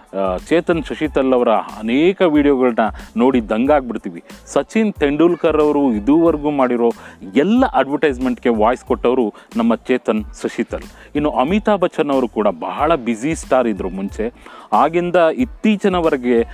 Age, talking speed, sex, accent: 30-49, 115 wpm, male, Indian